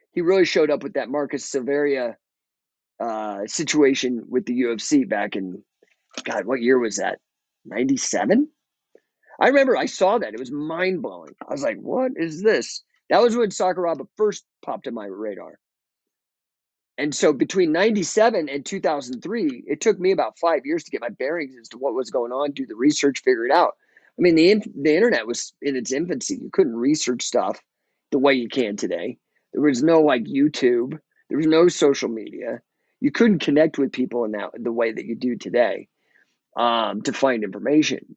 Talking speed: 185 wpm